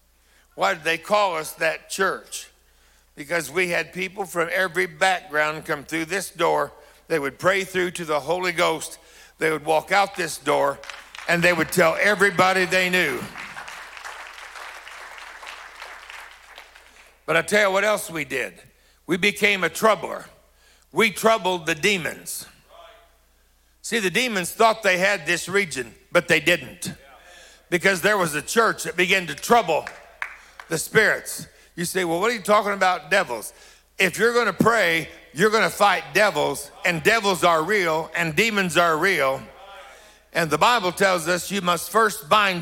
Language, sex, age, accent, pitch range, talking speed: English, male, 60-79, American, 165-200 Hz, 160 wpm